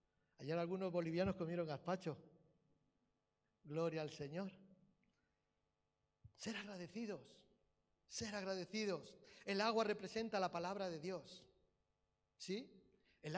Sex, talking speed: male, 95 wpm